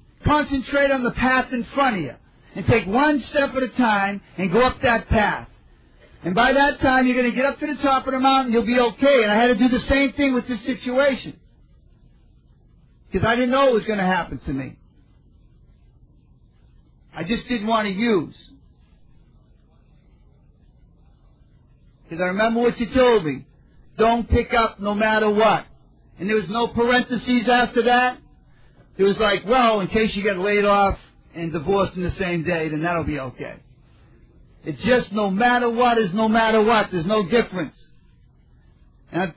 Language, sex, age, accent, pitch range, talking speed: English, male, 50-69, American, 195-250 Hz, 180 wpm